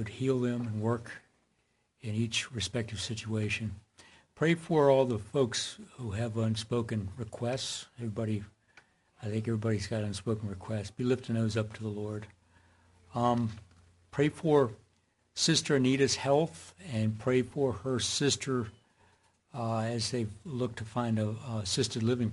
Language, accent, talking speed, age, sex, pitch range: English, American, 140 wpm, 60-79, male, 105-120 Hz